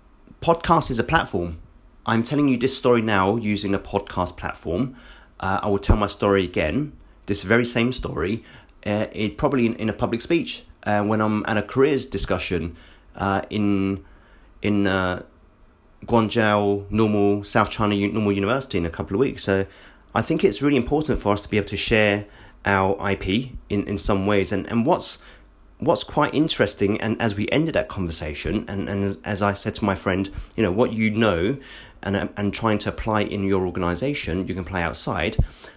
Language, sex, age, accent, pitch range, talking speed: English, male, 30-49, British, 95-115 Hz, 190 wpm